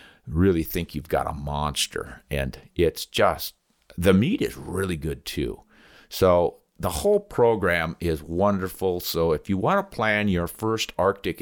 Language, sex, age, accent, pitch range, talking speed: English, male, 50-69, American, 80-100 Hz, 160 wpm